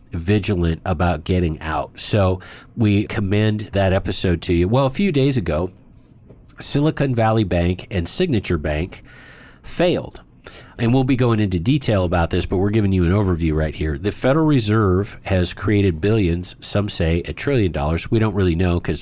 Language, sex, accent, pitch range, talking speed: English, male, American, 90-120 Hz, 175 wpm